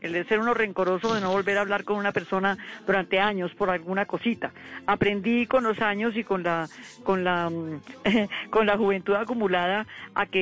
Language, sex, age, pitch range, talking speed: English, female, 40-59, 195-225 Hz, 190 wpm